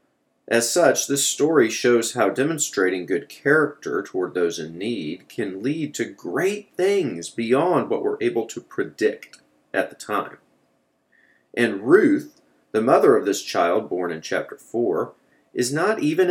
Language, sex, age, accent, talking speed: English, male, 40-59, American, 150 wpm